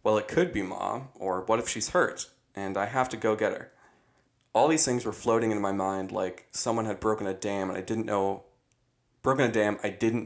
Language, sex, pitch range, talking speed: English, male, 100-115 Hz, 235 wpm